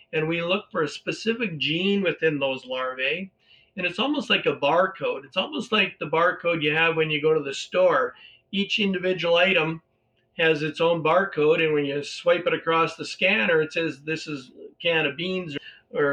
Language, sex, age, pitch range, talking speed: English, male, 50-69, 150-185 Hz, 200 wpm